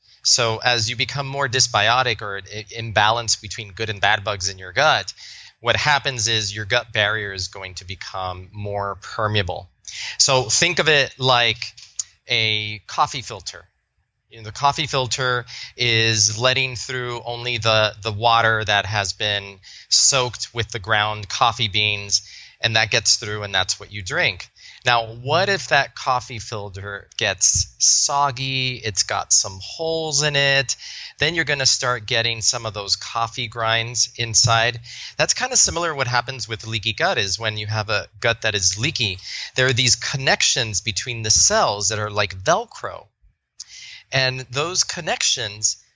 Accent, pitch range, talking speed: American, 105-125 Hz, 165 wpm